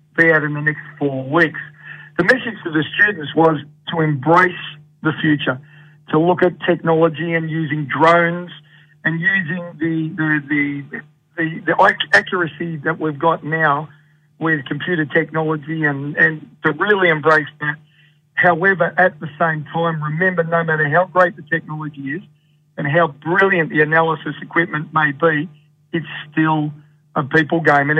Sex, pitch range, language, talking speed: male, 150-175 Hz, English, 150 wpm